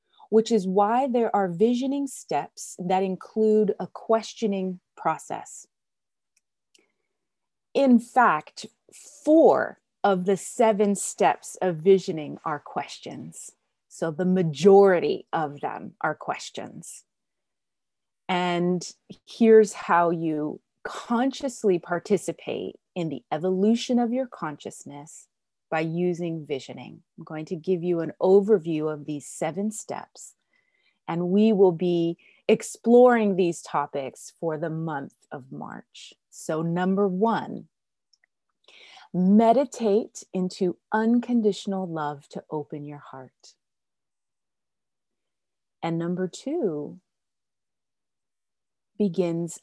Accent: American